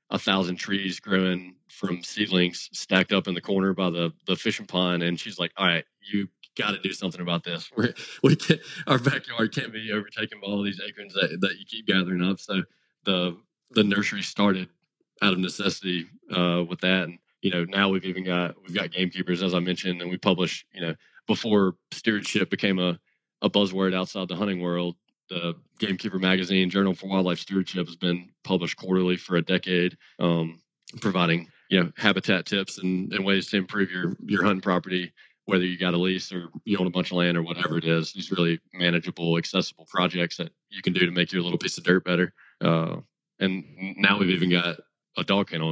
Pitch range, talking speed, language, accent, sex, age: 85-95 Hz, 205 wpm, English, American, male, 20-39